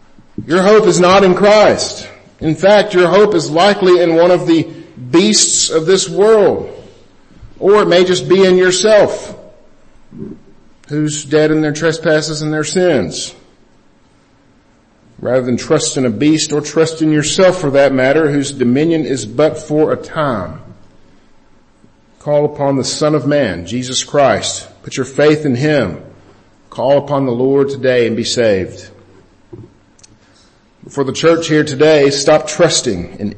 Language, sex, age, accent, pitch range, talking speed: English, male, 50-69, American, 115-160 Hz, 150 wpm